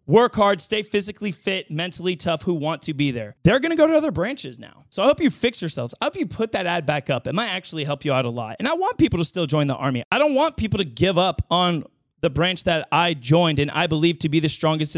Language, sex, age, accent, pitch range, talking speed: English, male, 30-49, American, 155-220 Hz, 280 wpm